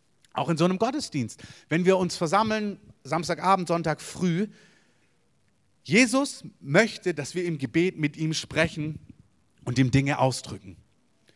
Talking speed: 130 wpm